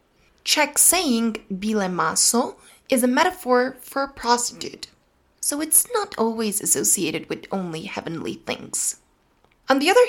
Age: 20-39